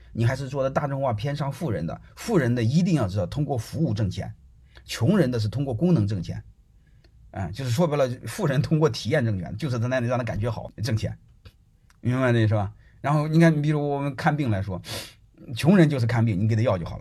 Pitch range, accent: 105-135 Hz, native